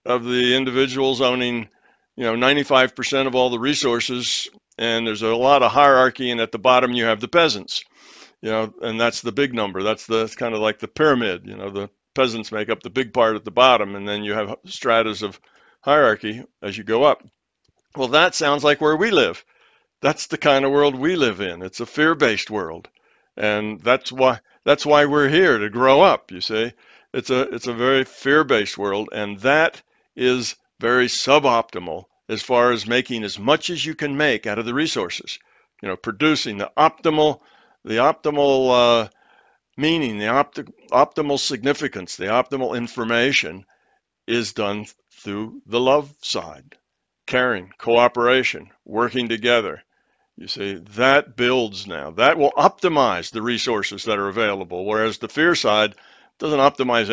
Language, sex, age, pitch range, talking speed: English, male, 60-79, 110-135 Hz, 175 wpm